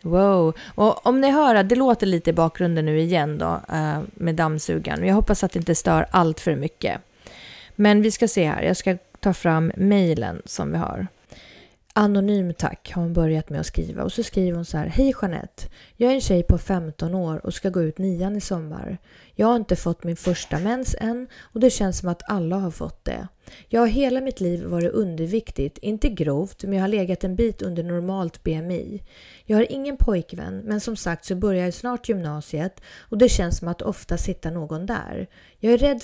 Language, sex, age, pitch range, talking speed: English, female, 30-49, 165-220 Hz, 215 wpm